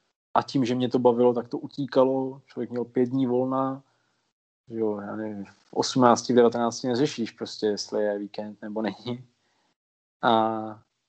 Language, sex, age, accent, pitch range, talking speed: Czech, male, 20-39, native, 115-130 Hz, 150 wpm